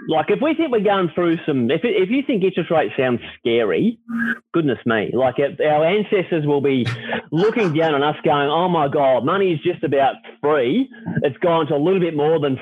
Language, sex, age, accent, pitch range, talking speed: English, male, 30-49, Australian, 140-195 Hz, 220 wpm